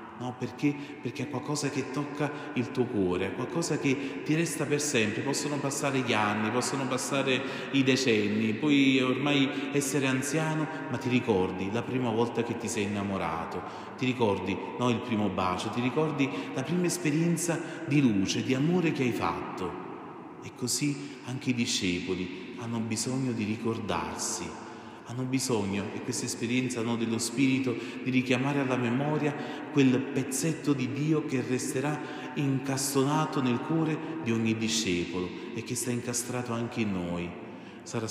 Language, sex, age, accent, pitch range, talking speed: Italian, male, 30-49, native, 115-140 Hz, 155 wpm